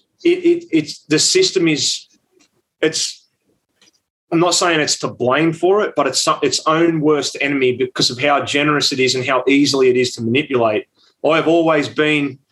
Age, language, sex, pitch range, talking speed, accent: 30-49, English, male, 140-165 Hz, 175 wpm, Australian